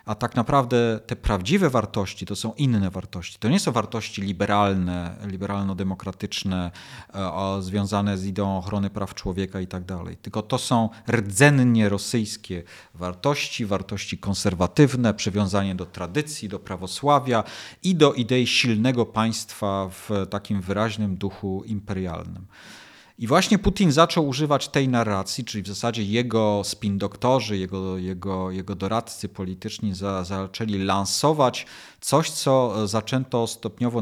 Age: 40-59